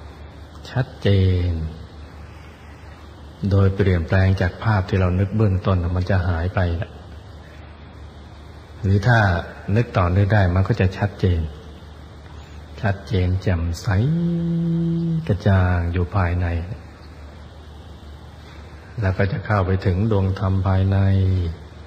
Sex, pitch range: male, 85-100 Hz